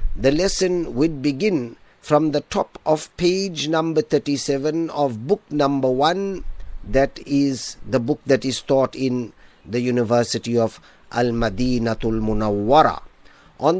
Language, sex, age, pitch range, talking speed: Arabic, male, 50-69, 120-160 Hz, 125 wpm